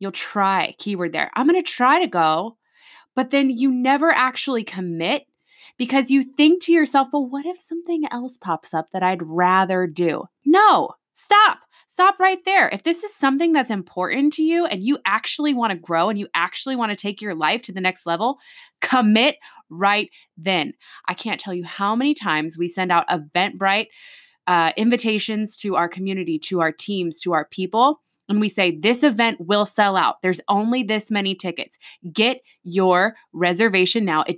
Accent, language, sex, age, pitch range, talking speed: American, English, female, 20-39, 185-300 Hz, 185 wpm